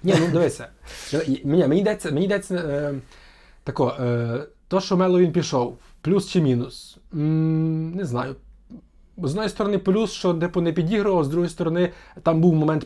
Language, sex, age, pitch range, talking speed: Ukrainian, male, 20-39, 140-175 Hz, 160 wpm